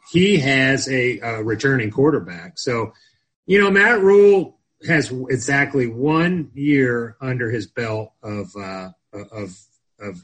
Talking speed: 110 wpm